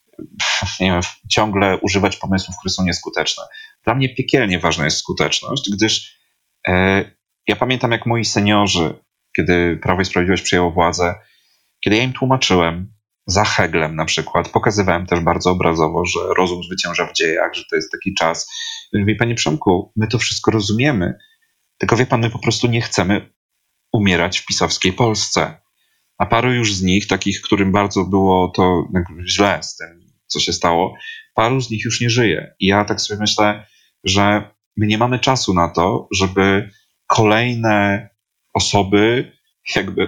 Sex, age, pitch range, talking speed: male, 30-49, 95-120 Hz, 160 wpm